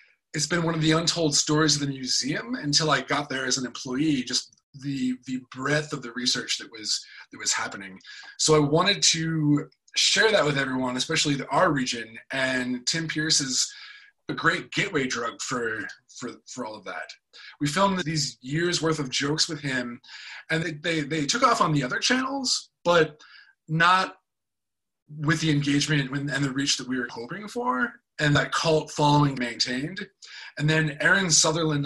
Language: English